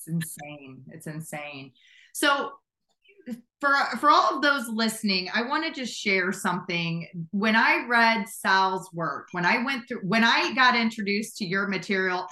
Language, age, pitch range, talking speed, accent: English, 30-49, 190-230 Hz, 160 wpm, American